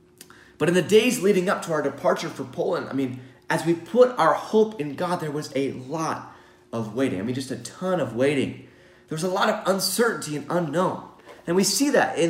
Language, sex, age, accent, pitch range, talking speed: English, male, 30-49, American, 140-220 Hz, 225 wpm